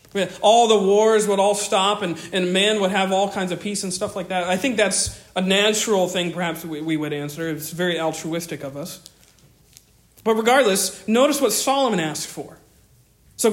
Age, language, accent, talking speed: 40-59, English, American, 190 wpm